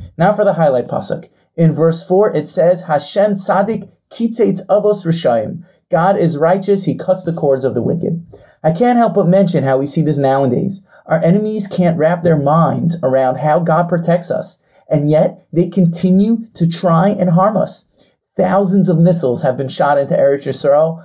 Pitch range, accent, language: 160-195 Hz, American, English